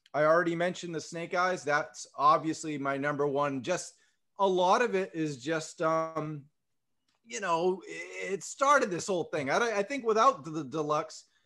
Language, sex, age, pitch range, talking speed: English, male, 20-39, 155-225 Hz, 175 wpm